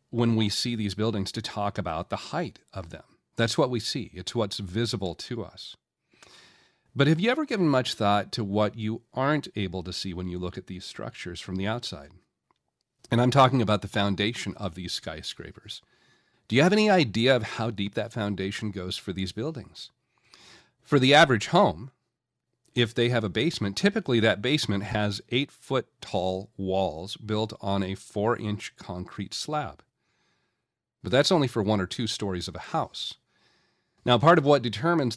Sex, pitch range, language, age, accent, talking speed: male, 100-125 Hz, English, 40-59, American, 175 wpm